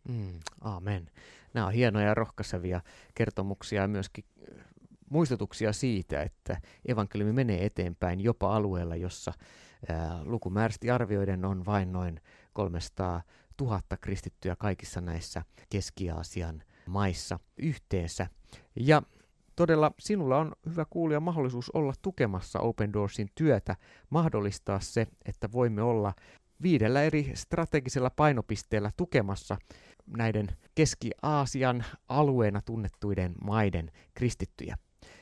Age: 30-49